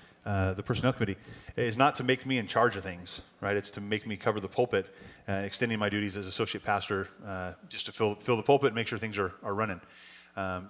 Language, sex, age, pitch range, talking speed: English, male, 30-49, 100-125 Hz, 240 wpm